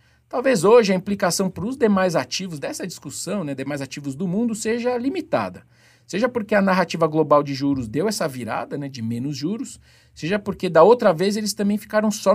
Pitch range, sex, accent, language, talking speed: 155-220 Hz, male, Brazilian, Portuguese, 195 wpm